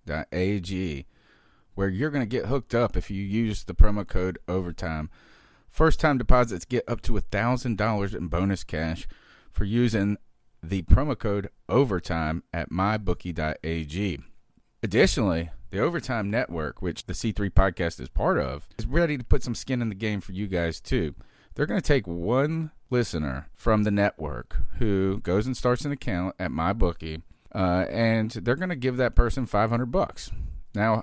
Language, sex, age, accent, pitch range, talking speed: English, male, 30-49, American, 90-125 Hz, 165 wpm